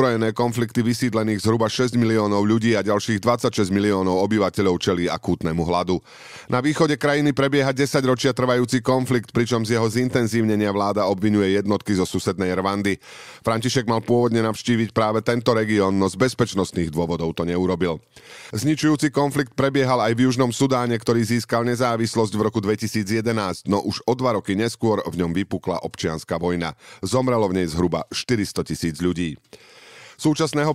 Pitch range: 100-125 Hz